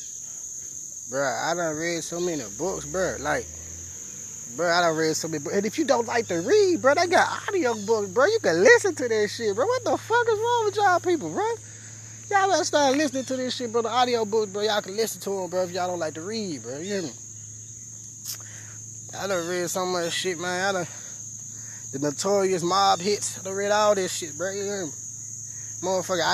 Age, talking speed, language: 20-39, 220 wpm, English